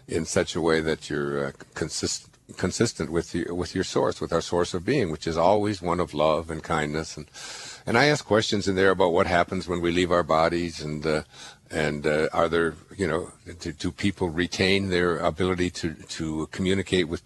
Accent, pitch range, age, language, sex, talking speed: American, 80-100 Hz, 60-79, English, male, 210 wpm